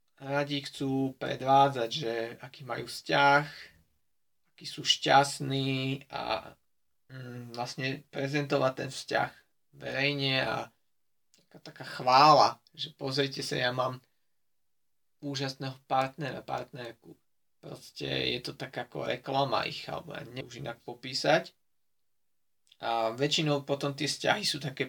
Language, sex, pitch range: Slovak, male, 130-155 Hz